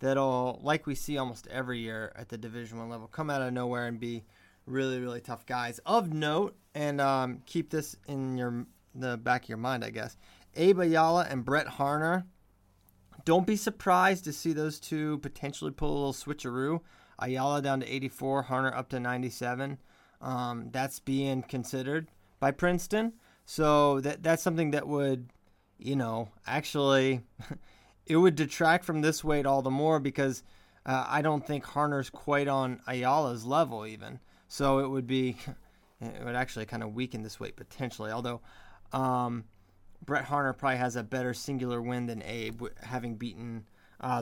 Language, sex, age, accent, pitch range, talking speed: English, male, 20-39, American, 120-150 Hz, 170 wpm